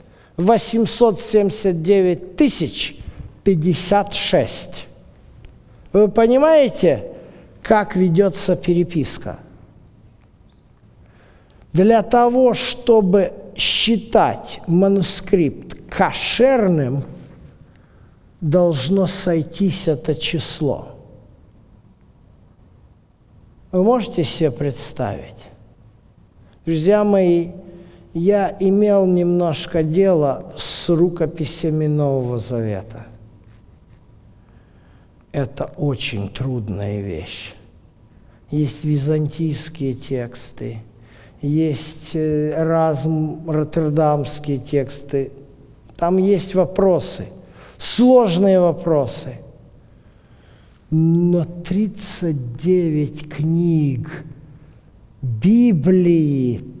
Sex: male